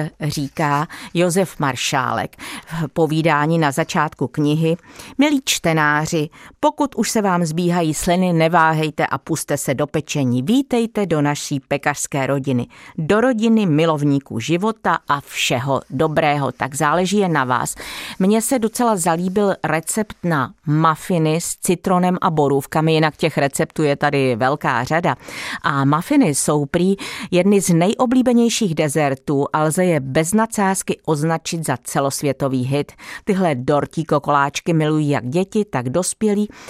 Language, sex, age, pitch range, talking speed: Czech, female, 40-59, 145-185 Hz, 130 wpm